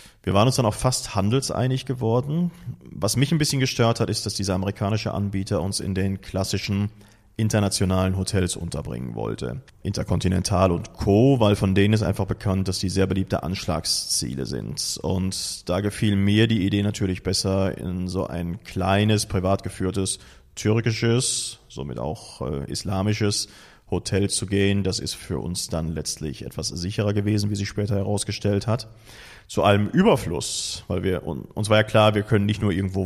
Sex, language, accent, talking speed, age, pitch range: male, German, German, 165 wpm, 30-49, 95-110 Hz